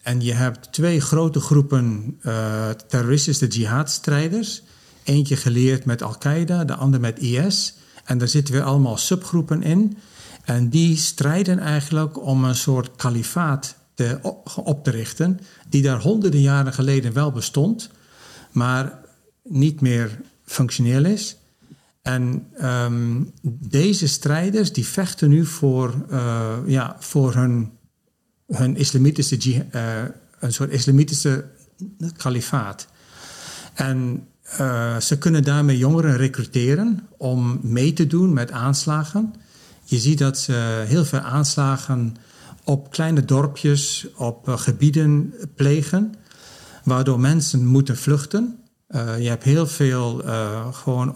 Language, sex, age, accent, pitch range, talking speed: Dutch, male, 50-69, Dutch, 125-160 Hz, 120 wpm